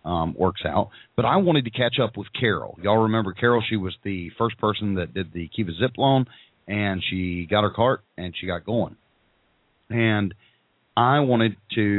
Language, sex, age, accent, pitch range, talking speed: English, male, 40-59, American, 90-115 Hz, 190 wpm